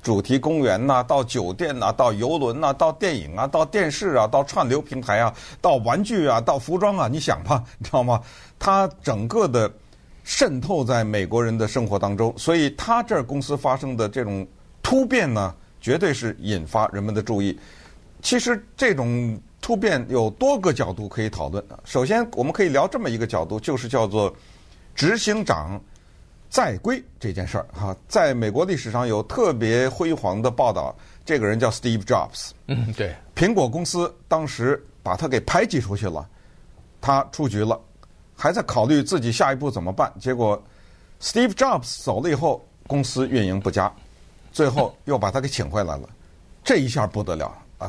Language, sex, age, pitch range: Chinese, male, 50-69, 105-140 Hz